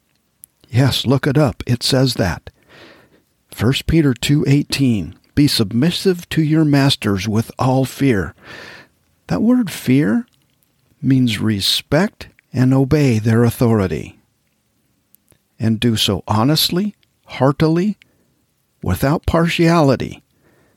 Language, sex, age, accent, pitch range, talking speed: English, male, 50-69, American, 105-145 Hz, 100 wpm